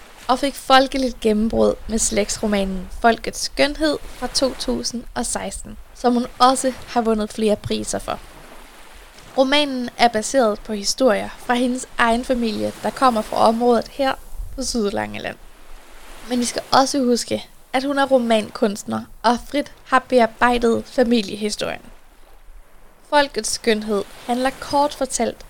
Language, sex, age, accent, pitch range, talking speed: Danish, female, 10-29, native, 220-260 Hz, 125 wpm